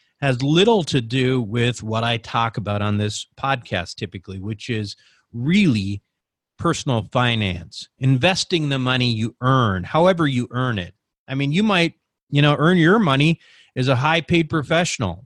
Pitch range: 115-145 Hz